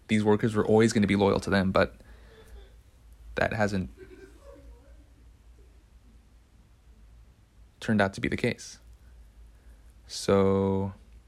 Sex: male